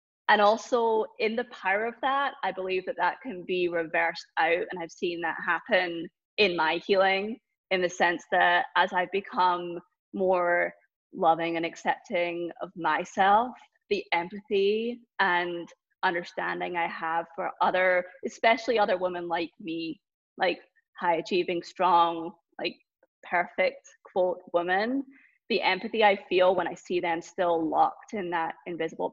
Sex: female